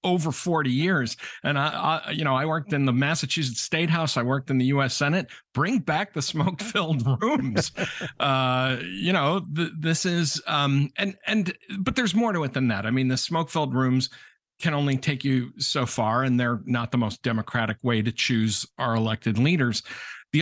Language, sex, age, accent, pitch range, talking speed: English, male, 50-69, American, 125-155 Hz, 190 wpm